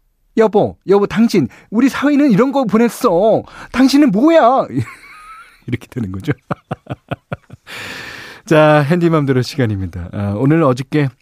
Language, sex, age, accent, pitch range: Korean, male, 40-59, native, 100-160 Hz